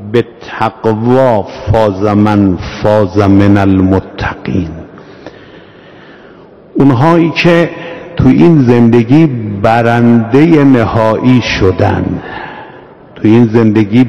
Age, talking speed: 50-69, 70 wpm